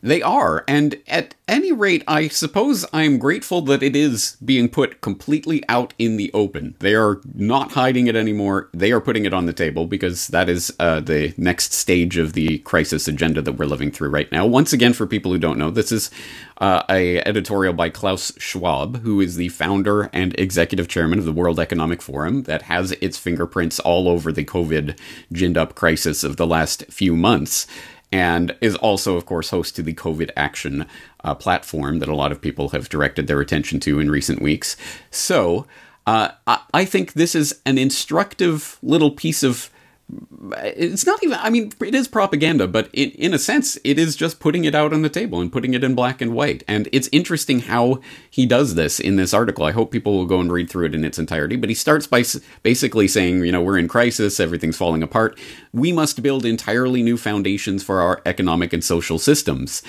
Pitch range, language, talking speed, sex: 85-135 Hz, English, 205 wpm, male